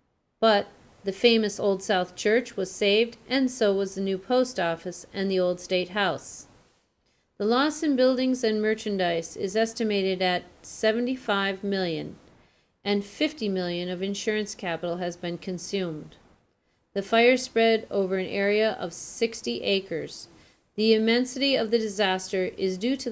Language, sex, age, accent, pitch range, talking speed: English, female, 40-59, American, 185-240 Hz, 150 wpm